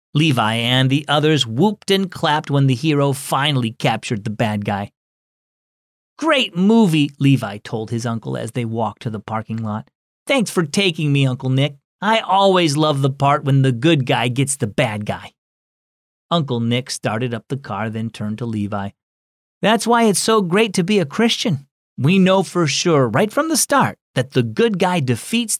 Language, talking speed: English, 185 wpm